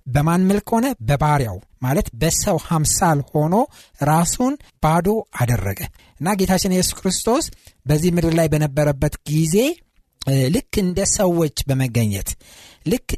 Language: Amharic